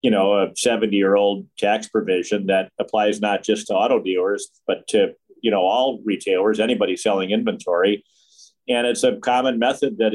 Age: 50-69